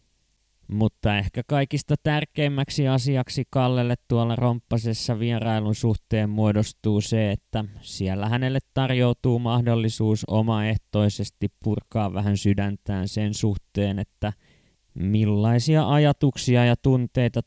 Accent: native